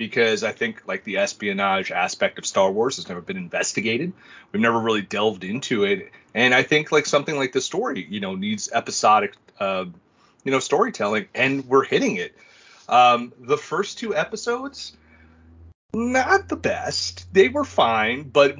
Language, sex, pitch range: English, male, 115-195 Hz